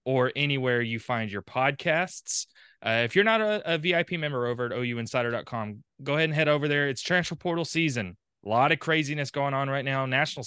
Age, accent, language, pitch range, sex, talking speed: 20-39, American, English, 120-145 Hz, male, 205 wpm